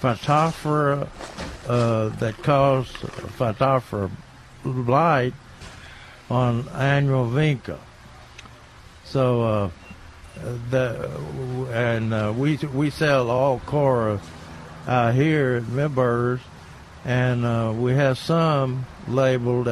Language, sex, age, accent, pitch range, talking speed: English, male, 60-79, American, 110-140 Hz, 90 wpm